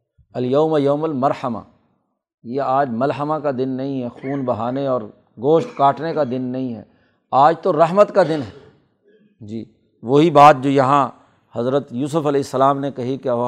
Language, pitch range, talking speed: Urdu, 135-175 Hz, 165 wpm